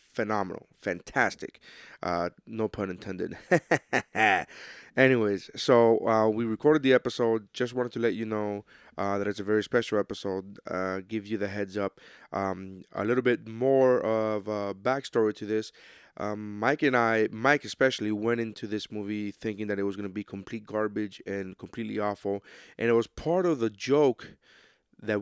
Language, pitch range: English, 105-125 Hz